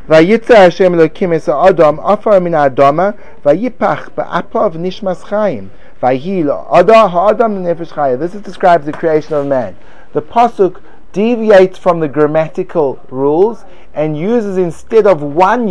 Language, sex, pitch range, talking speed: English, male, 165-200 Hz, 70 wpm